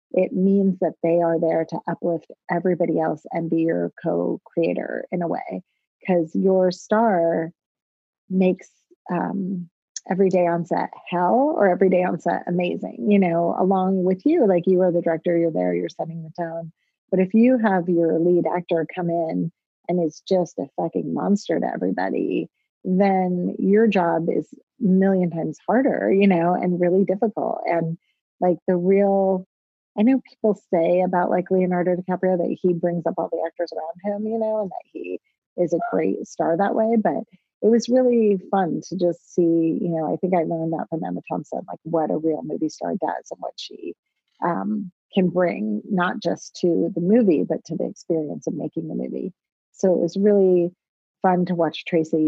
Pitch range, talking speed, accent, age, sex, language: 165-195 Hz, 185 wpm, American, 30-49, female, English